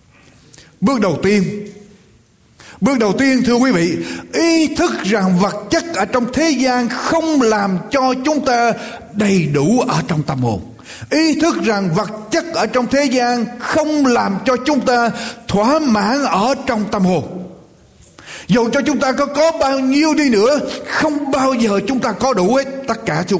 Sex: male